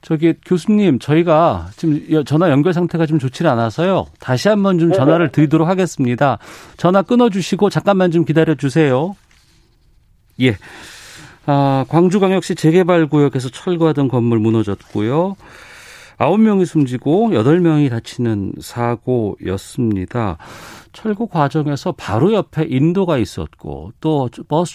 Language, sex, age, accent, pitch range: Korean, male, 40-59, native, 110-170 Hz